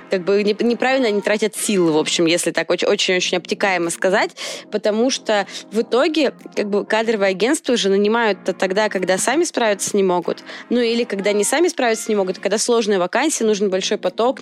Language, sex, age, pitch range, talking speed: Russian, female, 20-39, 195-240 Hz, 160 wpm